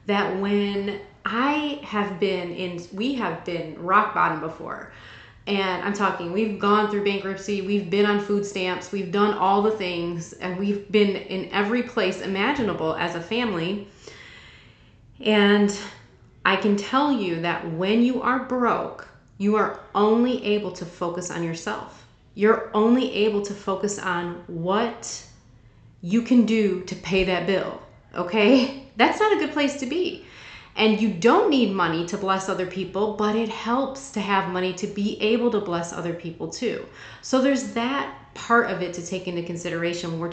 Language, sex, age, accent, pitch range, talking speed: English, female, 30-49, American, 180-225 Hz, 170 wpm